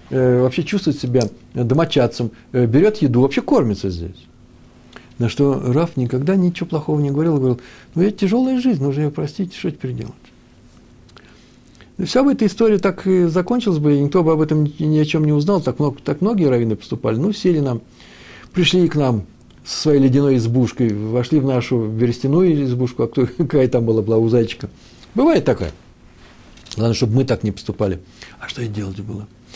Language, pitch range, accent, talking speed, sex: Russian, 115-165 Hz, native, 185 wpm, male